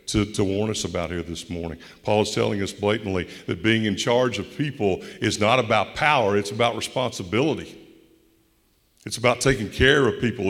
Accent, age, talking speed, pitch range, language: American, 60-79, 185 wpm, 105-140 Hz, English